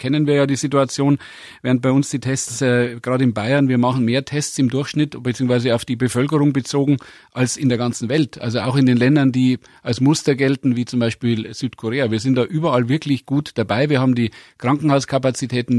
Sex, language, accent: male, German, German